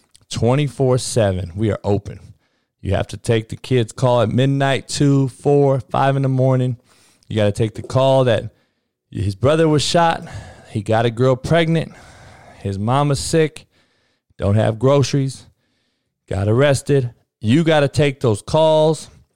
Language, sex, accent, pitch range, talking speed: English, male, American, 105-135 Hz, 150 wpm